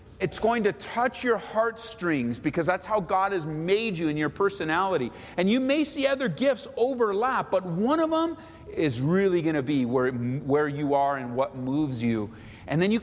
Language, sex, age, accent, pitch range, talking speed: English, male, 40-59, American, 145-225 Hz, 200 wpm